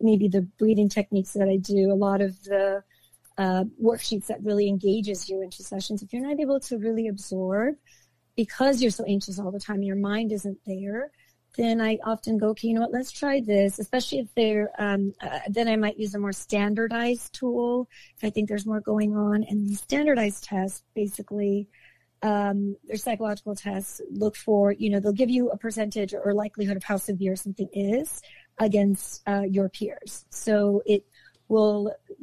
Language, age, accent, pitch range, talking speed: English, 40-59, American, 195-220 Hz, 185 wpm